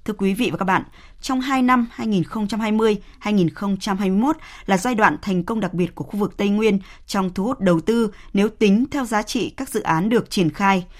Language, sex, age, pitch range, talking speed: Vietnamese, female, 20-39, 175-230 Hz, 205 wpm